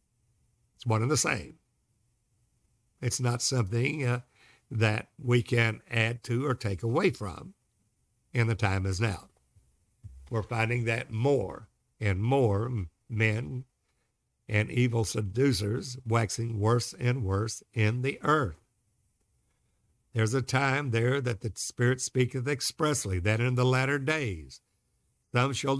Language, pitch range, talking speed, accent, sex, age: English, 110-135 Hz, 130 wpm, American, male, 60-79